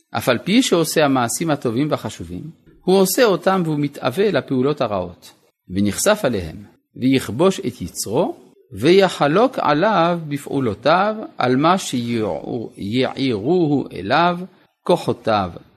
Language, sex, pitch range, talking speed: Hebrew, male, 110-170 Hz, 105 wpm